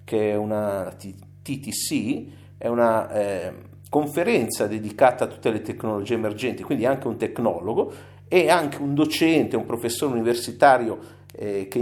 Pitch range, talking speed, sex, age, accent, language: 105-130 Hz, 135 wpm, male, 50-69, native, Italian